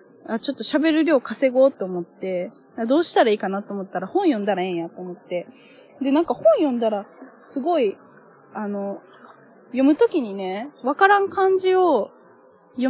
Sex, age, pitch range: female, 10-29, 195-270 Hz